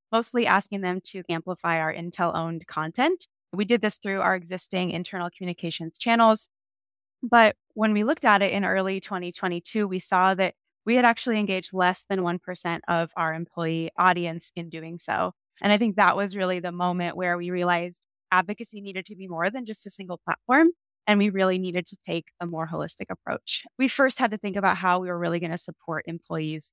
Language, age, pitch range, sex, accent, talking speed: English, 20-39, 175-210 Hz, female, American, 195 wpm